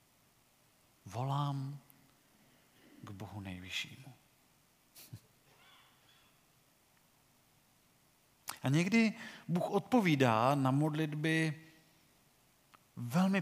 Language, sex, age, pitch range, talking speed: Czech, male, 50-69, 130-165 Hz, 50 wpm